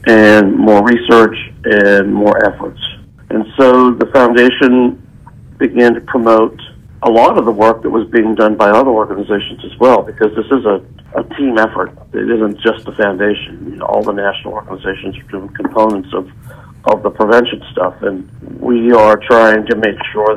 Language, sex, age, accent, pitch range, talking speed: English, male, 60-79, American, 105-120 Hz, 170 wpm